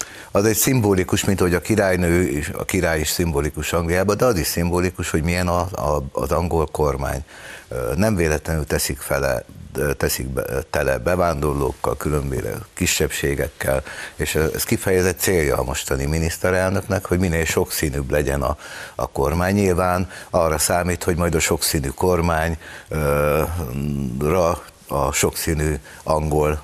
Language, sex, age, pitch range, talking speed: Hungarian, male, 60-79, 70-85 Hz, 120 wpm